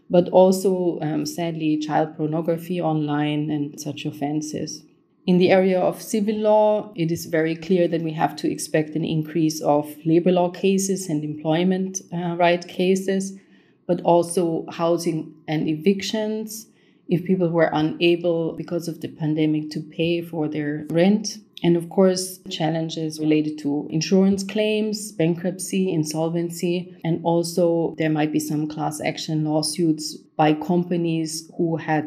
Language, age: English, 30-49